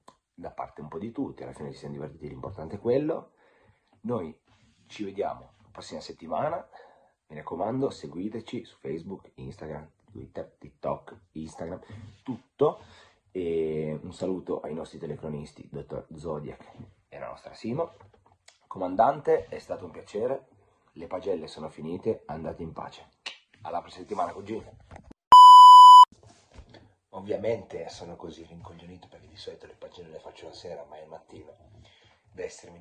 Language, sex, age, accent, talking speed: Italian, male, 30-49, native, 140 wpm